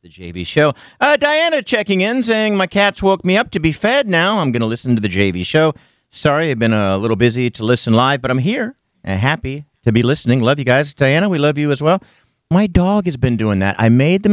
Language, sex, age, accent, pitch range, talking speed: English, male, 50-69, American, 110-185 Hz, 255 wpm